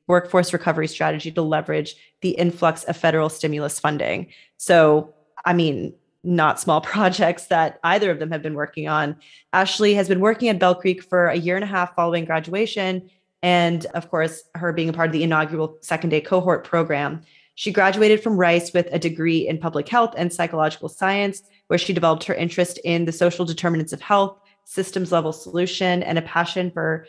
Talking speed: 185 wpm